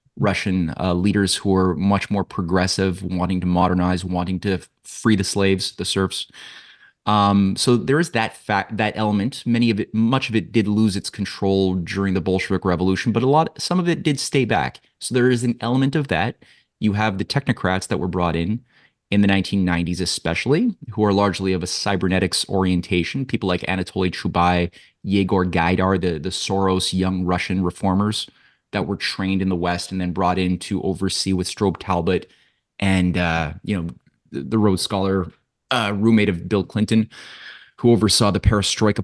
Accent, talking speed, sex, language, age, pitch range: American, 180 wpm, male, English, 20-39, 90-110 Hz